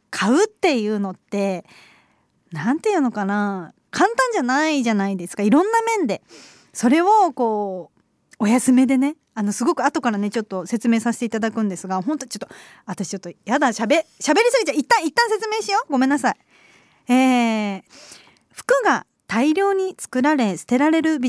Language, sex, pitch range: Japanese, female, 205-290 Hz